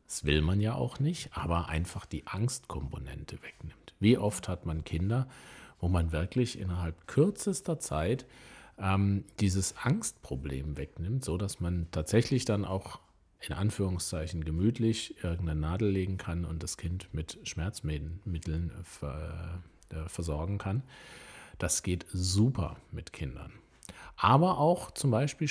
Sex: male